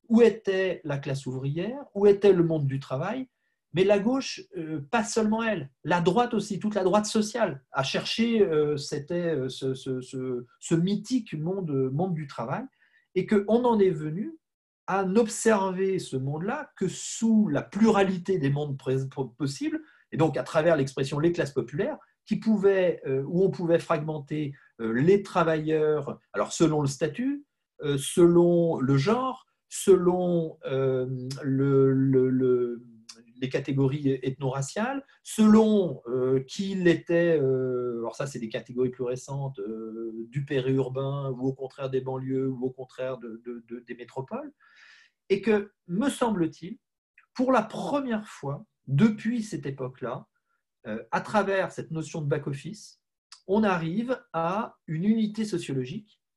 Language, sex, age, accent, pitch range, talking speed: French, male, 40-59, French, 135-210 Hz, 135 wpm